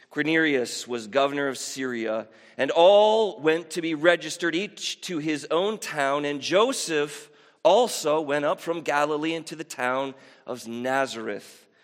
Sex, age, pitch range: male, 40-59, 130-170 Hz